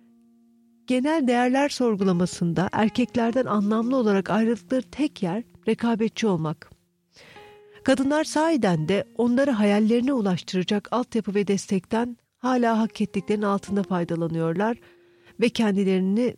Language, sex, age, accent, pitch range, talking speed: Turkish, female, 50-69, native, 180-240 Hz, 100 wpm